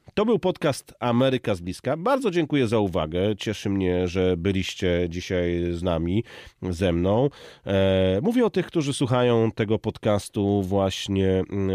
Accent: native